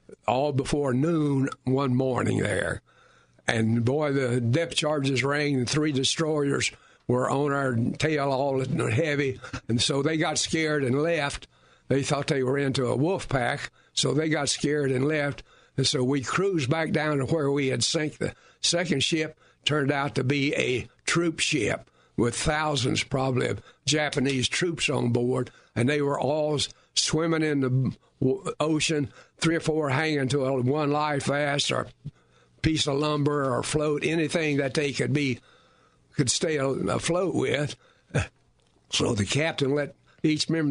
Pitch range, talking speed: 130-155 Hz, 160 wpm